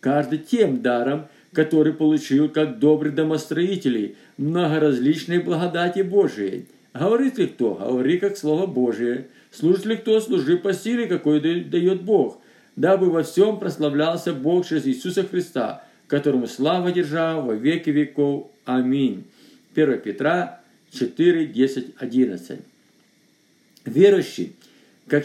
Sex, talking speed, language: male, 115 wpm, Russian